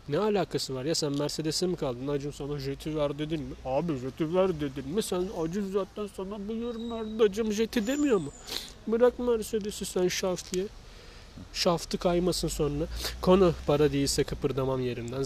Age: 30-49